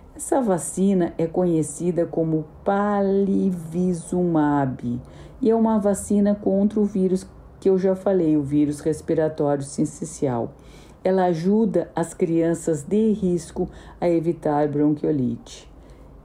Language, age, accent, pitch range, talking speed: Portuguese, 50-69, Brazilian, 150-185 Hz, 110 wpm